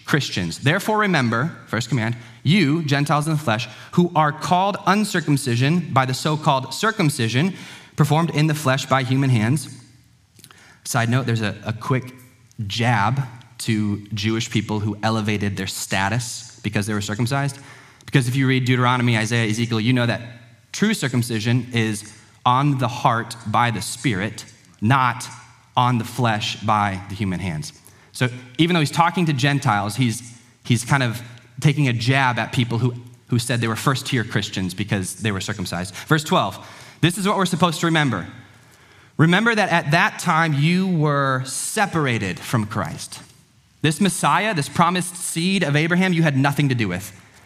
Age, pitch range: 30-49, 115-150 Hz